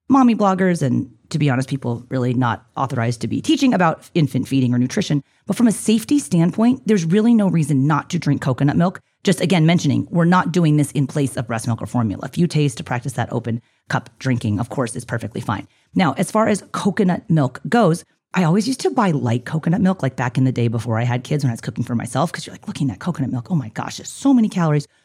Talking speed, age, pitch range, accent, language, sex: 245 wpm, 30-49, 125-175 Hz, American, English, female